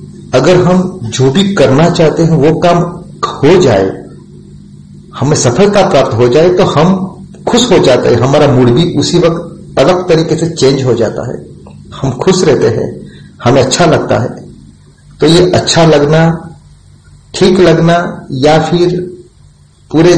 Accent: native